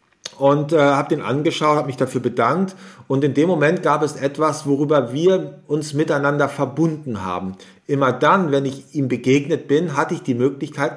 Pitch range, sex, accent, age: 130-160 Hz, male, German, 40-59